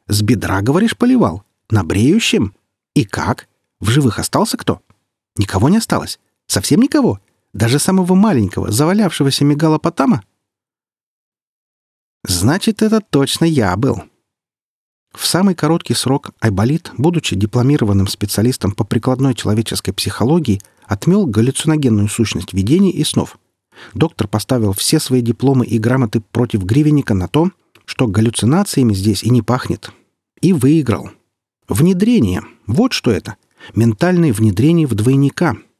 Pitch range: 105-155 Hz